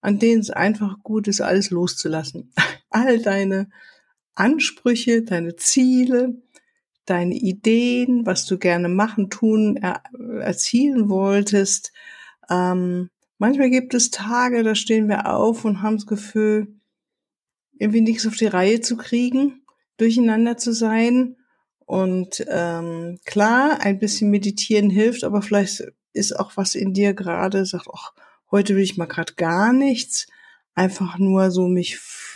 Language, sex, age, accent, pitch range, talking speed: German, female, 60-79, German, 195-240 Hz, 135 wpm